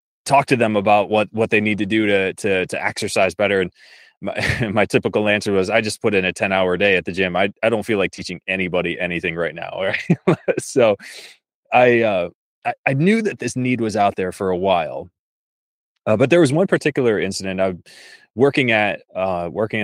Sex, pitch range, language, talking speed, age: male, 90-115 Hz, English, 215 wpm, 20-39